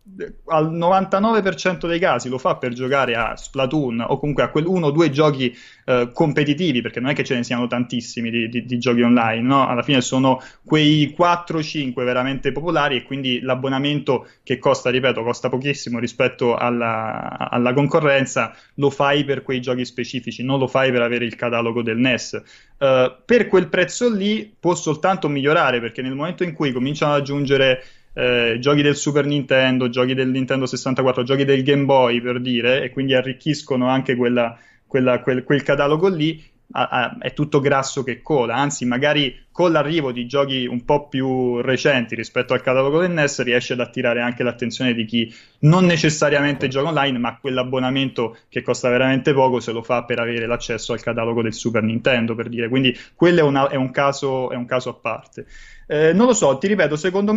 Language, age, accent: Italian, 20-39, native